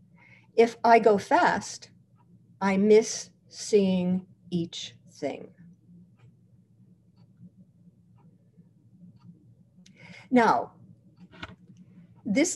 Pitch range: 180-250 Hz